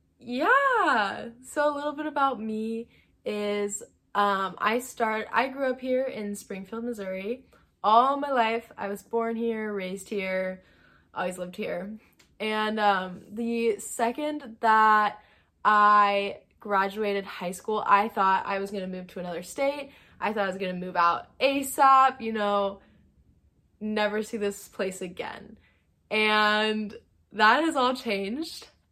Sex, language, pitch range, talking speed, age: female, English, 200-240 Hz, 145 wpm, 10-29